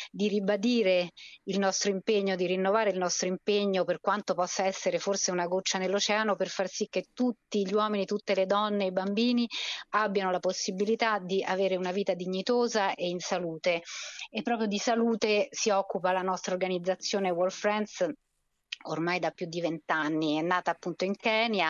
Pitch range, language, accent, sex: 170-195 Hz, Italian, native, female